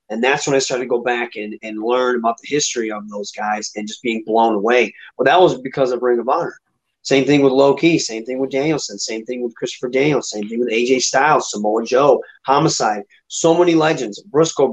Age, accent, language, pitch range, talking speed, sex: 30-49, American, English, 125-165 Hz, 230 wpm, male